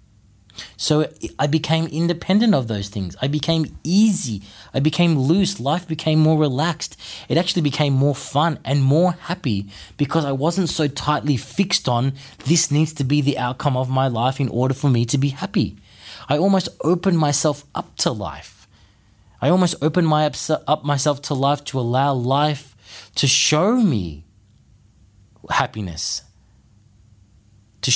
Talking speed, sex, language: 150 wpm, male, English